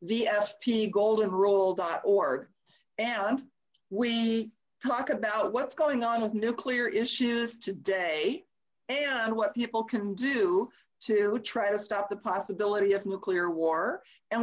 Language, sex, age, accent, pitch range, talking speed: English, female, 50-69, American, 200-245 Hz, 110 wpm